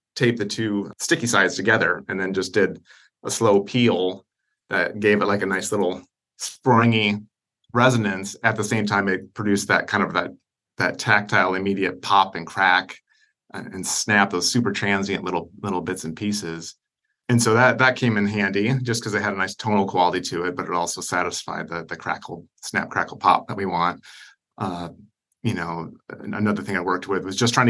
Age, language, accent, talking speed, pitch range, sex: 30-49, English, American, 195 wpm, 95-120 Hz, male